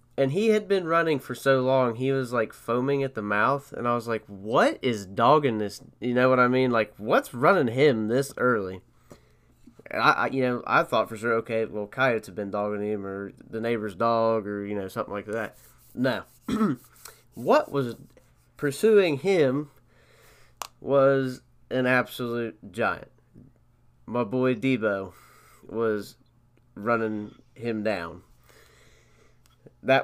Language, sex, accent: English, male, American